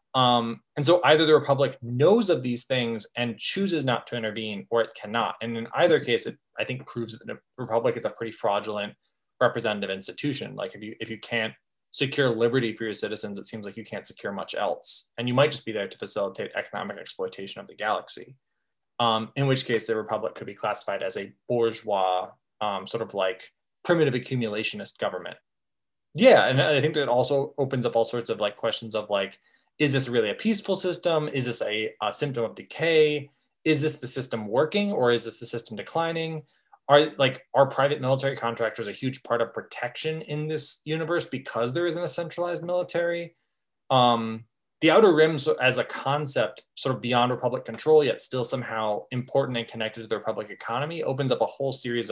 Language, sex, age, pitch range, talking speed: English, male, 20-39, 115-155 Hz, 200 wpm